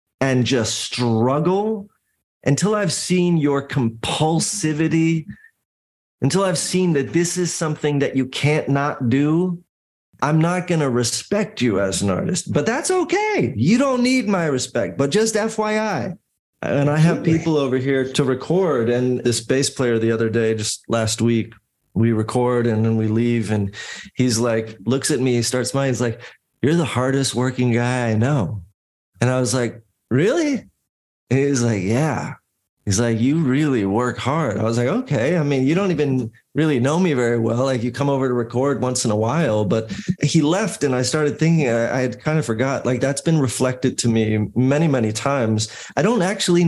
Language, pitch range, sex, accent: English, 115-155 Hz, male, American